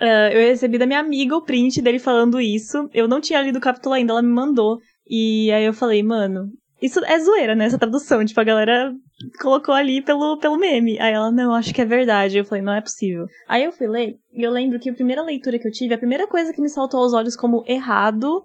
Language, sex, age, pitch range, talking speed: Portuguese, female, 10-29, 225-270 Hz, 245 wpm